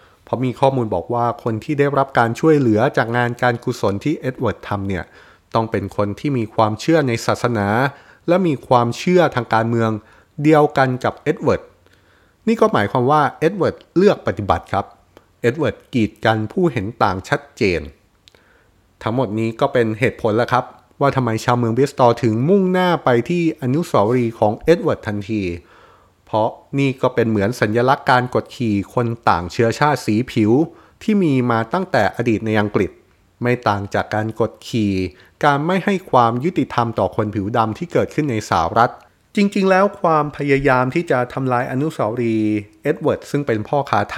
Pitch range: 110-145 Hz